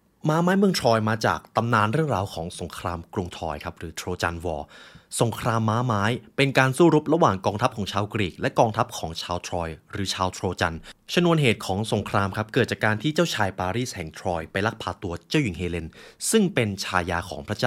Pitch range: 95-130 Hz